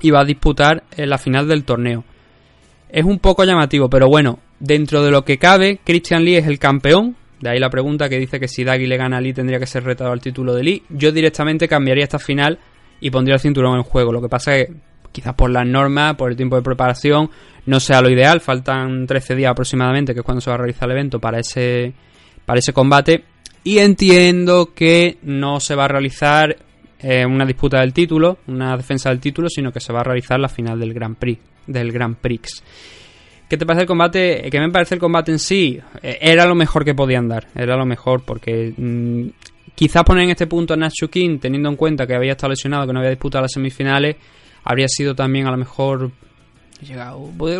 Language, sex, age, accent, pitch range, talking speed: Spanish, male, 20-39, Spanish, 125-160 Hz, 220 wpm